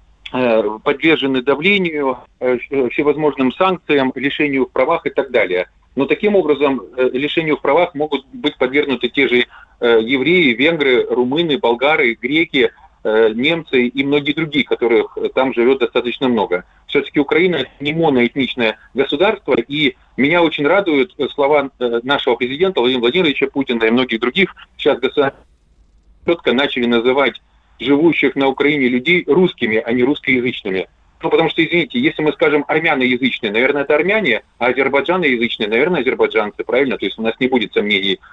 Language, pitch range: Russian, 125-170 Hz